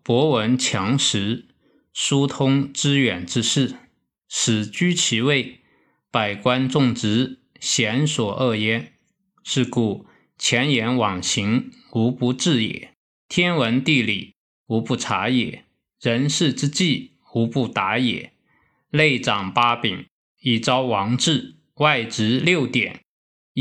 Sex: male